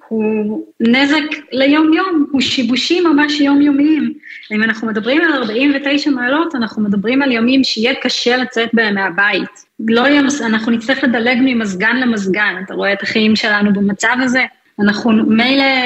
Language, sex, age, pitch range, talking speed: Hebrew, female, 20-39, 215-270 Hz, 150 wpm